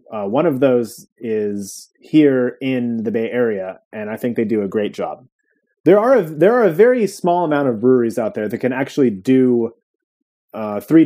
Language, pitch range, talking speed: English, 120-155 Hz, 200 wpm